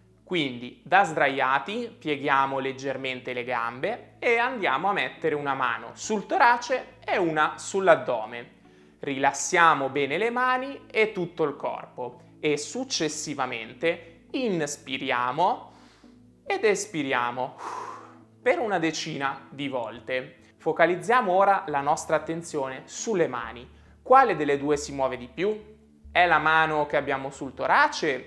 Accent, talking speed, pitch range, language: native, 120 wpm, 135-205 Hz, Italian